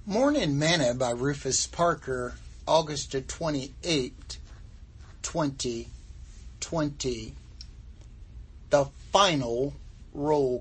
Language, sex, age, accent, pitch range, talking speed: English, male, 60-79, American, 115-150 Hz, 60 wpm